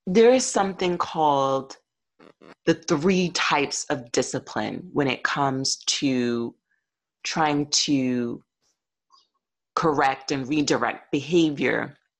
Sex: female